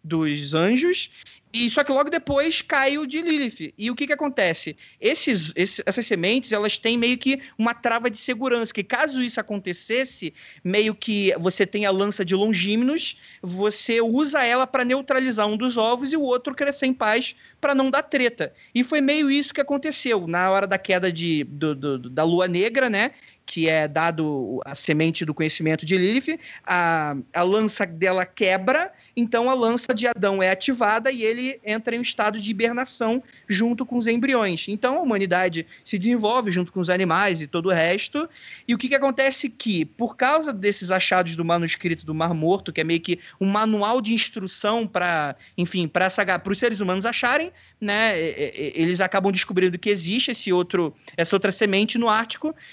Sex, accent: male, Brazilian